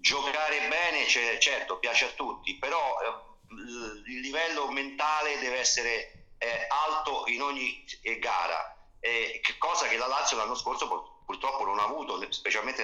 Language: Italian